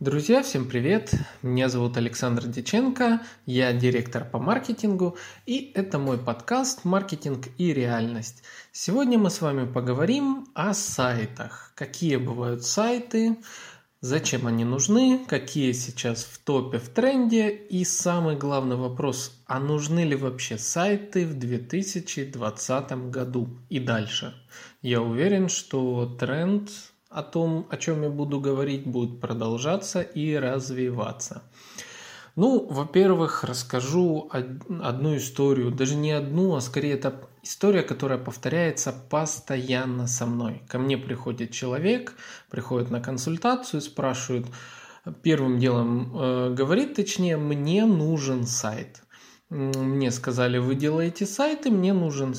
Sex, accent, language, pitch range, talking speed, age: male, native, Russian, 125-180 Hz, 120 wpm, 20-39